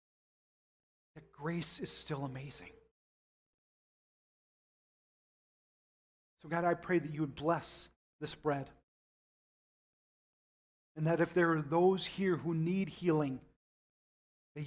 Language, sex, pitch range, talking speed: English, male, 120-165 Hz, 100 wpm